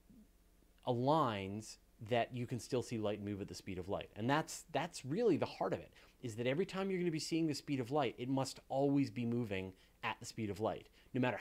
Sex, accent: male, American